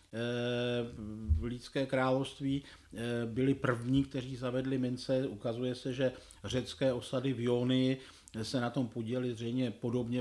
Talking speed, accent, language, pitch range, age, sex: 125 wpm, native, Czech, 110-140 Hz, 50-69, male